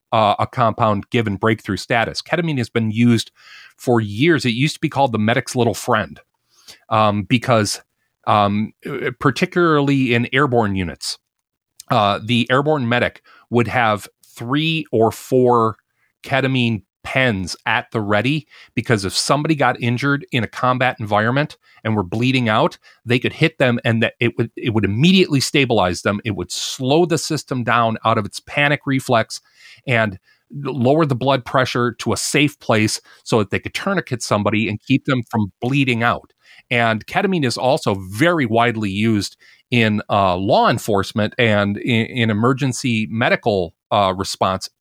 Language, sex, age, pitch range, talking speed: English, male, 30-49, 110-140 Hz, 160 wpm